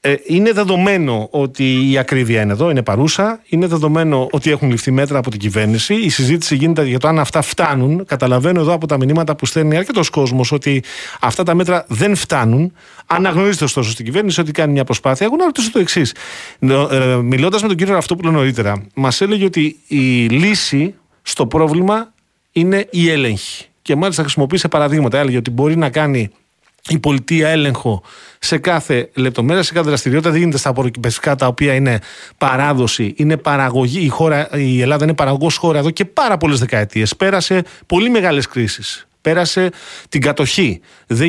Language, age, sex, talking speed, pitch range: Greek, 40-59, male, 170 wpm, 130-170 Hz